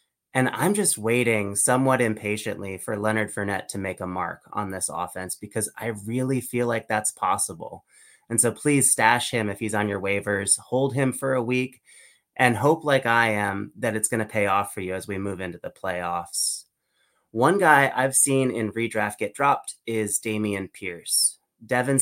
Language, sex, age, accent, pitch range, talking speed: English, male, 30-49, American, 105-135 Hz, 190 wpm